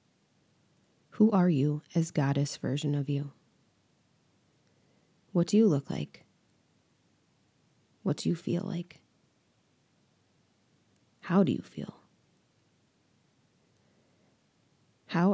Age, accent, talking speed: 30-49, American, 90 wpm